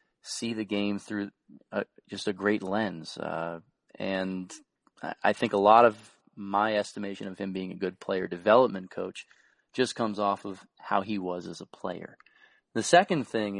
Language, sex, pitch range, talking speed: English, male, 95-110 Hz, 170 wpm